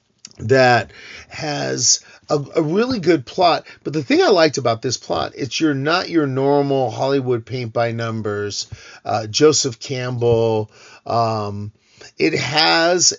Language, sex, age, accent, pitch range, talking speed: English, male, 40-59, American, 115-150 Hz, 135 wpm